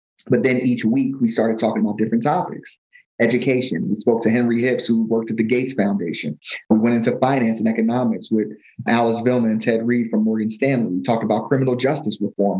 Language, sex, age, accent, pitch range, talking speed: English, male, 30-49, American, 115-140 Hz, 205 wpm